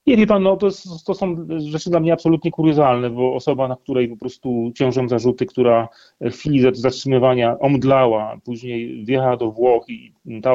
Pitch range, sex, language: 125-155 Hz, male, Polish